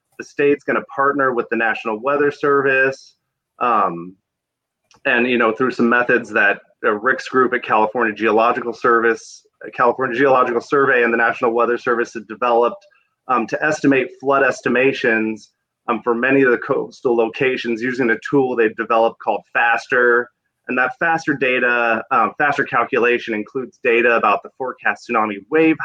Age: 30-49